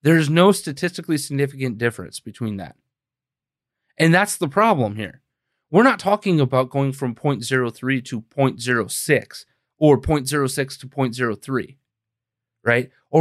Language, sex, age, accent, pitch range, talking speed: English, male, 30-49, American, 125-165 Hz, 125 wpm